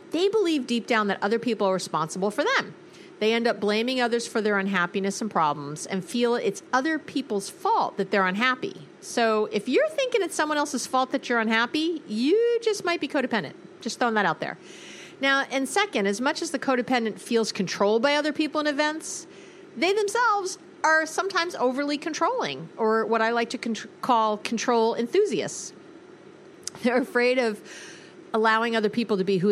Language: English